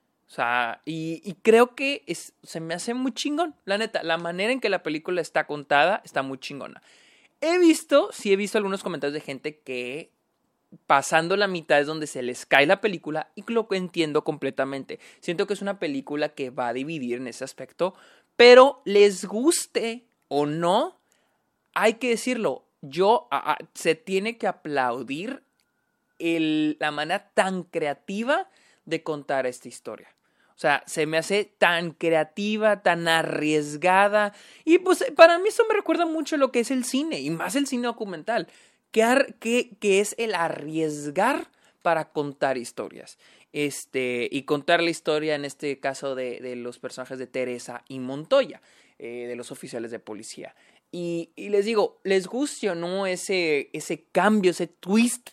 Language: Spanish